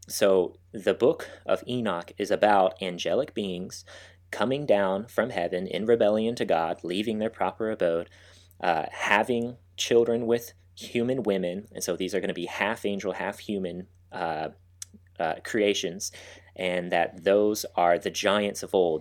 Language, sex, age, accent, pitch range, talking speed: English, male, 30-49, American, 90-100 Hz, 140 wpm